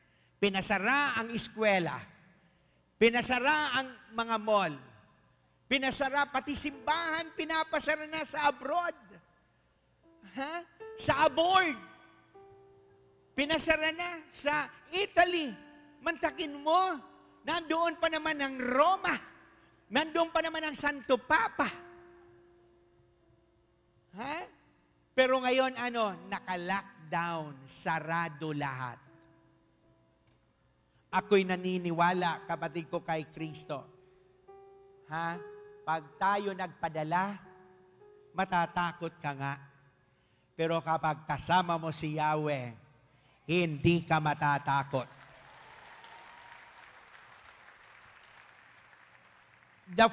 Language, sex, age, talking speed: Filipino, male, 50-69, 75 wpm